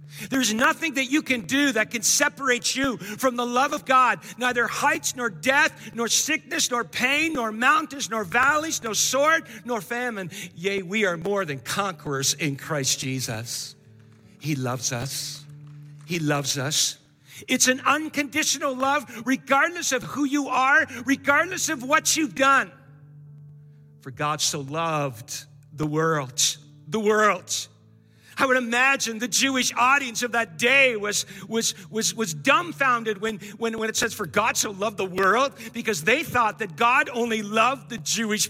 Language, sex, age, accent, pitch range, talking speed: English, male, 50-69, American, 170-255 Hz, 160 wpm